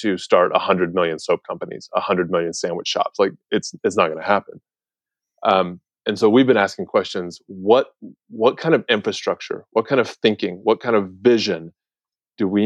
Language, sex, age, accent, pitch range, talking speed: English, male, 30-49, American, 90-120 Hz, 190 wpm